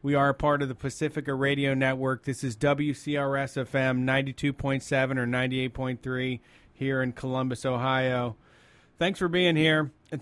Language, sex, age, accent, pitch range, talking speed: English, male, 30-49, American, 125-145 Hz, 140 wpm